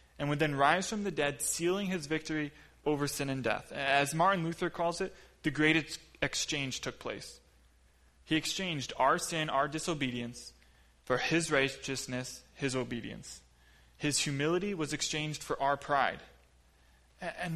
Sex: male